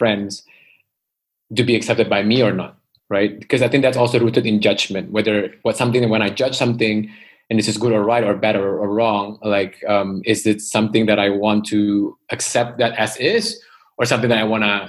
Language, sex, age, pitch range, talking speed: English, male, 20-39, 105-130 Hz, 220 wpm